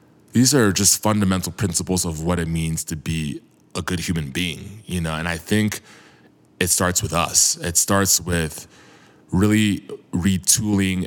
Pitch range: 85-105 Hz